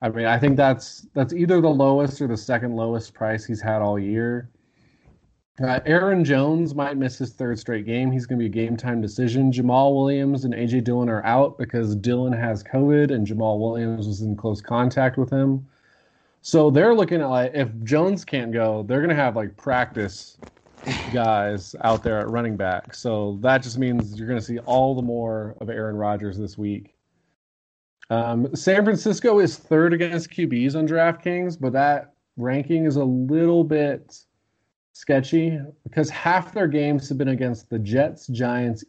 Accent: American